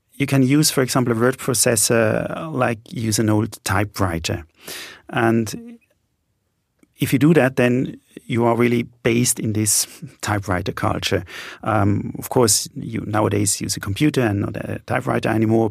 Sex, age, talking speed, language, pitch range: male, 40-59, 155 wpm, English, 115-145 Hz